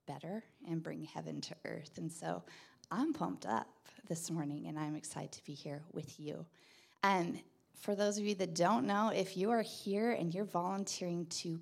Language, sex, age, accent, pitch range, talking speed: English, female, 20-39, American, 170-220 Hz, 190 wpm